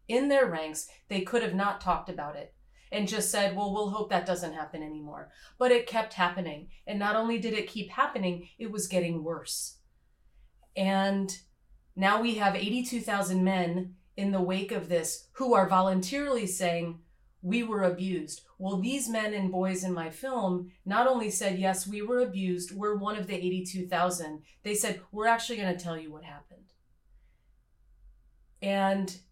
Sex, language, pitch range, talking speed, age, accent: female, English, 180-215 Hz, 170 wpm, 30-49, American